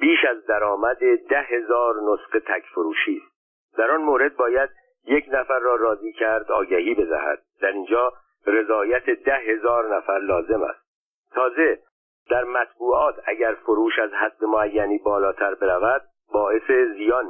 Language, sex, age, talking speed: Persian, male, 50-69, 140 wpm